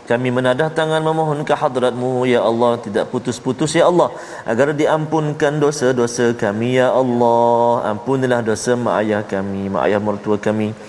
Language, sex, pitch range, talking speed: Malayalam, male, 115-145 Hz, 145 wpm